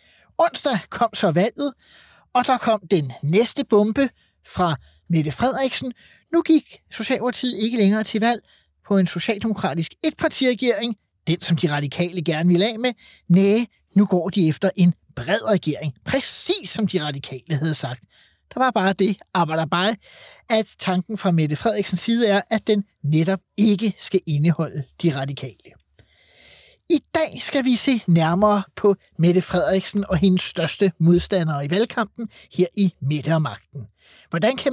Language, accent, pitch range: Danish, native, 165-225 Hz